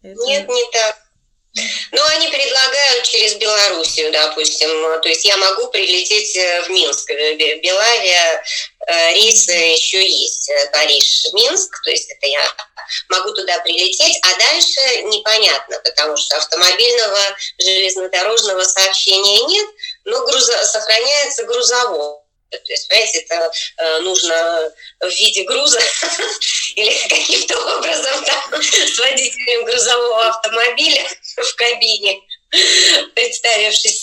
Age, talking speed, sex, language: 20-39, 110 wpm, female, Russian